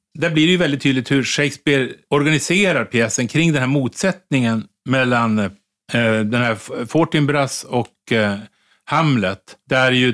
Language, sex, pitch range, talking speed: Swedish, male, 115-140 Hz, 150 wpm